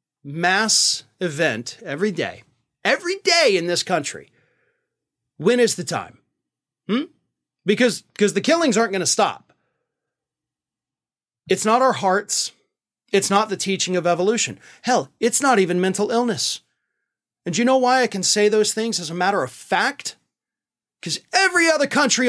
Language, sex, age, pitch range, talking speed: English, male, 30-49, 165-235 Hz, 150 wpm